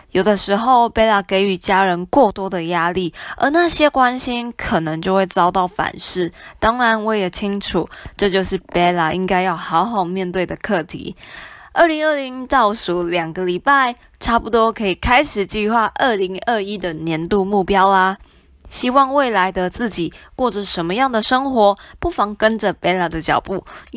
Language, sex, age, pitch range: Chinese, female, 20-39, 180-245 Hz